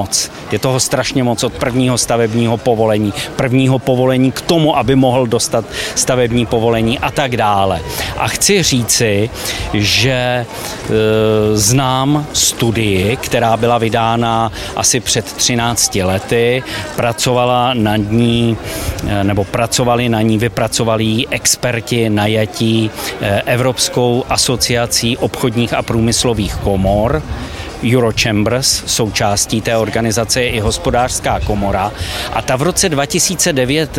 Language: Czech